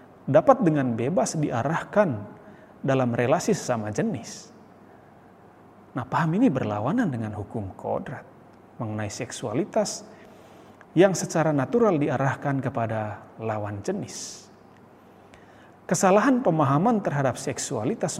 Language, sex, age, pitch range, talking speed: Indonesian, male, 30-49, 120-180 Hz, 90 wpm